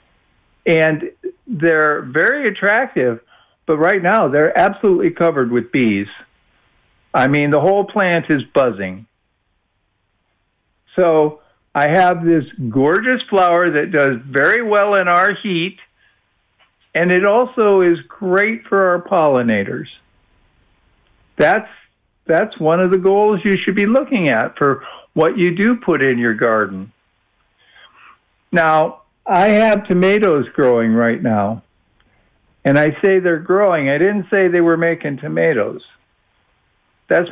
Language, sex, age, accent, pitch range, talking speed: English, male, 50-69, American, 135-200 Hz, 125 wpm